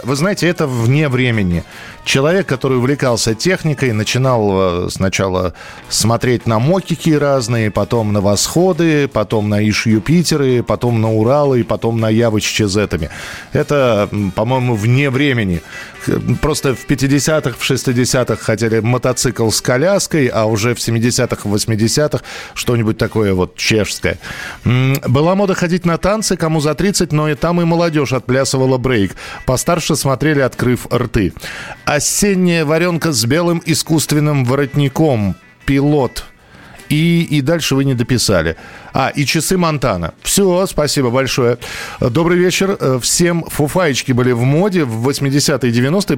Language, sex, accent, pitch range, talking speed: Russian, male, native, 120-165 Hz, 130 wpm